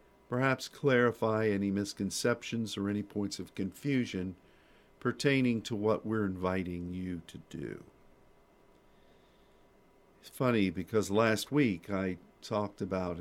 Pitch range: 95-115 Hz